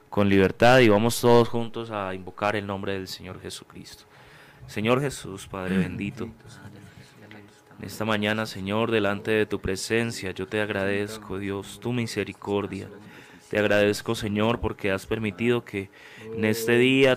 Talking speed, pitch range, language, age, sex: 140 wpm, 100-115 Hz, Spanish, 30-49, male